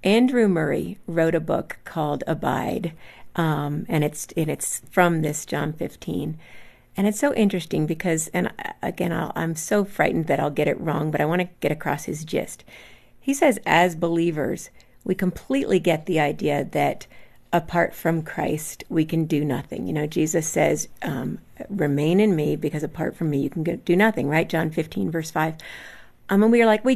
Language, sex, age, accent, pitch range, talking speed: English, female, 50-69, American, 155-195 Hz, 185 wpm